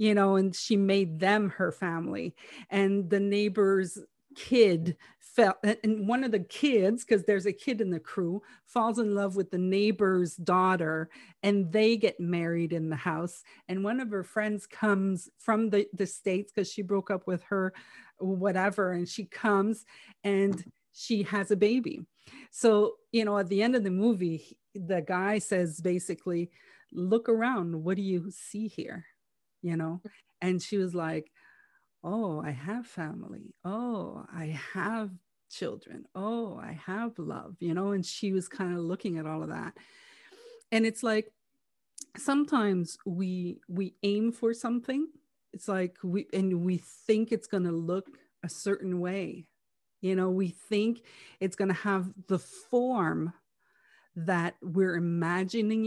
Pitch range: 180-220 Hz